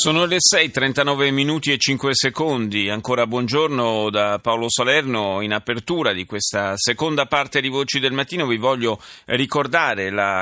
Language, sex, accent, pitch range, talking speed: Italian, male, native, 105-140 Hz, 150 wpm